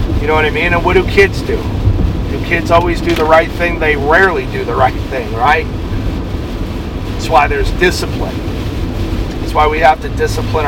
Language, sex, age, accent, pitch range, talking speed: English, male, 40-59, American, 90-150 Hz, 190 wpm